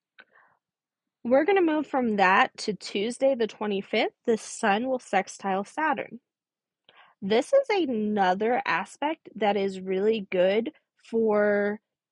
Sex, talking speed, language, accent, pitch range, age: female, 120 wpm, English, American, 200-255 Hz, 20-39